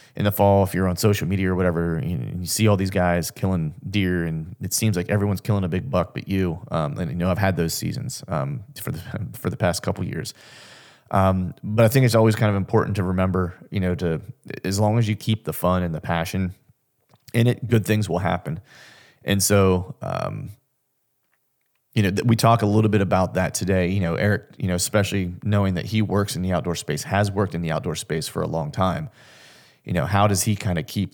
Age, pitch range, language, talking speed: 30-49, 90-110 Hz, English, 235 wpm